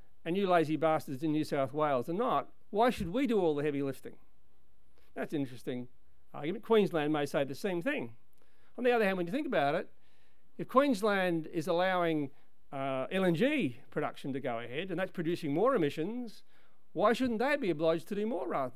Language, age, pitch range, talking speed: English, 50-69, 140-195 Hz, 195 wpm